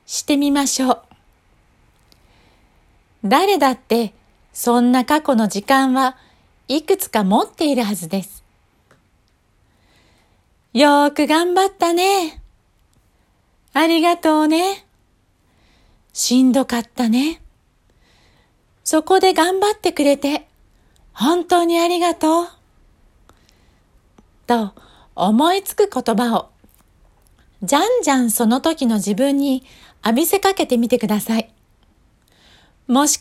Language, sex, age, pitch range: Japanese, female, 40-59, 225-330 Hz